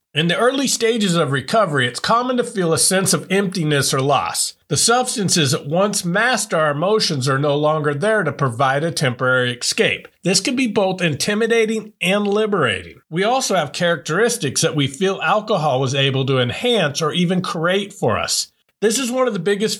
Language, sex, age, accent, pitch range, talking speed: English, male, 50-69, American, 145-210 Hz, 190 wpm